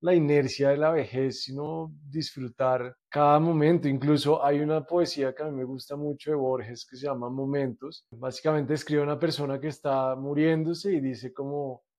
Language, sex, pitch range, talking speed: Spanish, male, 135-155 Hz, 175 wpm